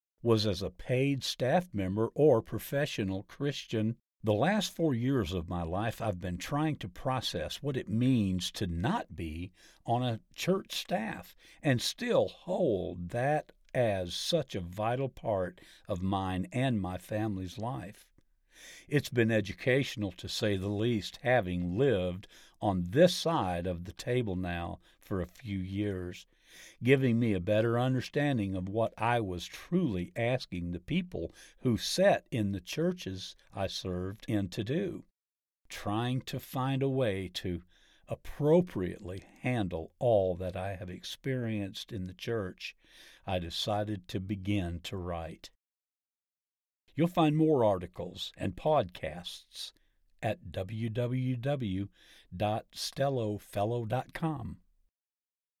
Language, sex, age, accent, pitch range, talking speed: English, male, 50-69, American, 95-130 Hz, 130 wpm